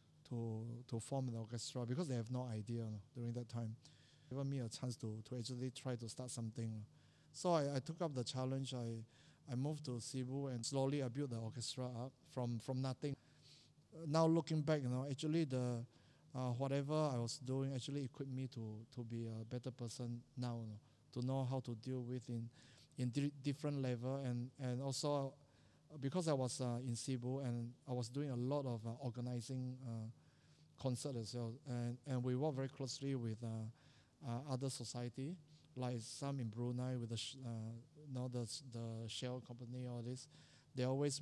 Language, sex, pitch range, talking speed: English, male, 120-140 Hz, 190 wpm